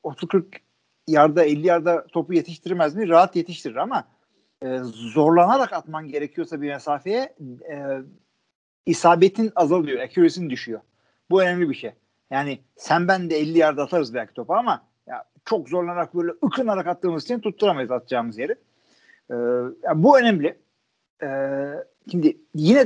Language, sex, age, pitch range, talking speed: Turkish, male, 50-69, 155-210 Hz, 135 wpm